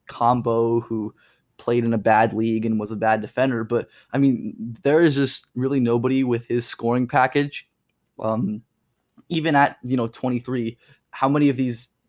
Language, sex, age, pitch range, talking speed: English, male, 20-39, 115-130 Hz, 170 wpm